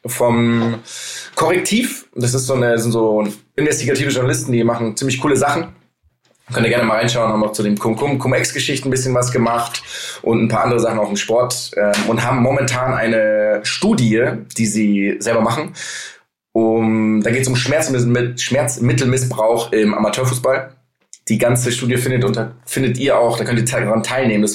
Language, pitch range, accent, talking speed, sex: German, 110-125 Hz, German, 175 wpm, male